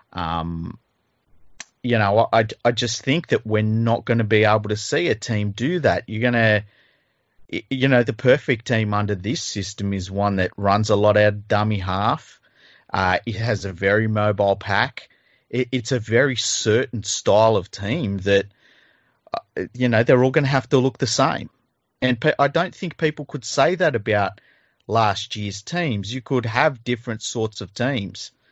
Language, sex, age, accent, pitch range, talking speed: English, male, 30-49, Australian, 100-120 Hz, 180 wpm